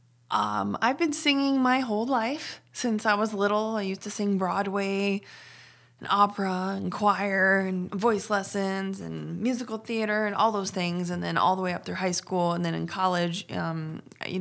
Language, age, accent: English, 20-39, American